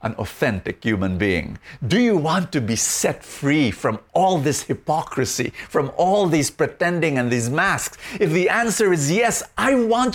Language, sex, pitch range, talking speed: English, male, 120-205 Hz, 170 wpm